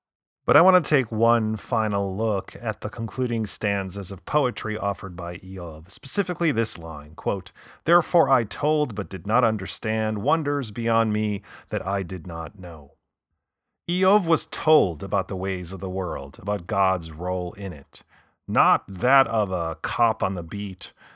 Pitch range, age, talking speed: 95-120 Hz, 30-49, 165 wpm